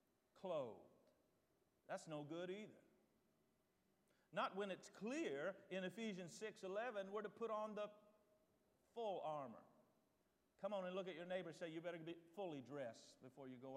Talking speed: 155 wpm